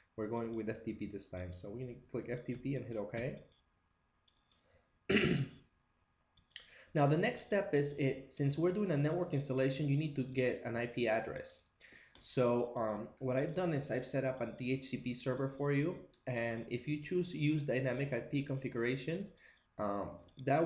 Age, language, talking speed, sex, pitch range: 20-39, English, 170 wpm, male, 105-130 Hz